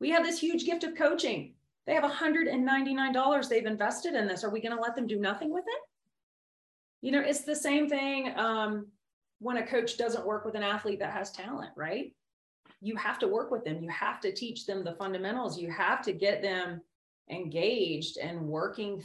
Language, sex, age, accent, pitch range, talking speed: English, female, 30-49, American, 160-220 Hz, 200 wpm